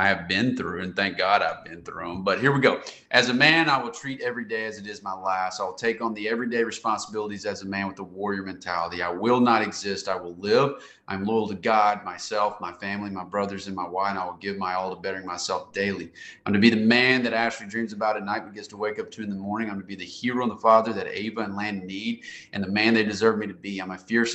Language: English